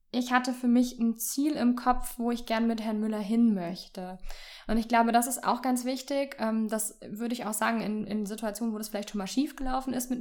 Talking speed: 235 wpm